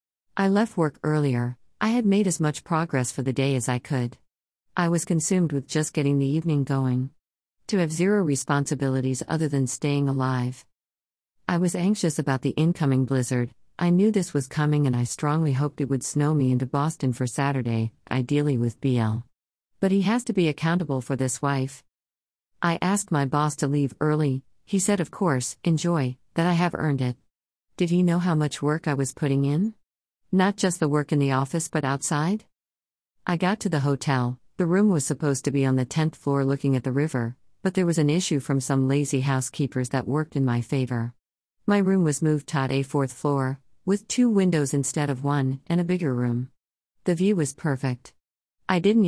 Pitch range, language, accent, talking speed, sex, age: 130-165 Hz, English, American, 200 wpm, female, 50-69